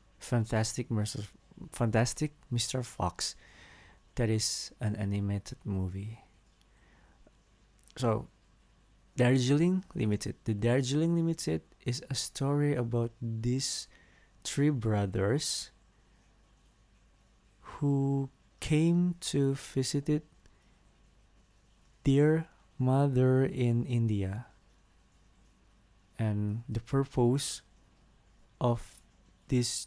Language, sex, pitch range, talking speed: English, male, 105-135 Hz, 70 wpm